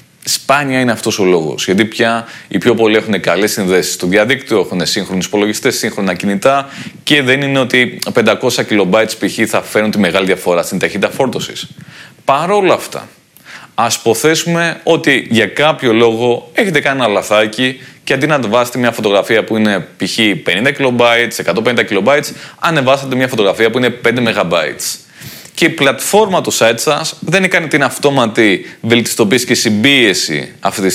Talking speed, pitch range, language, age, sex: 165 wpm, 110-150 Hz, Greek, 20-39, male